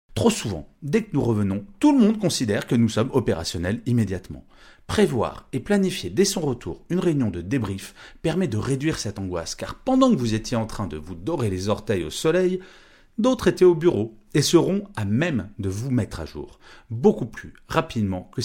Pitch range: 95-145 Hz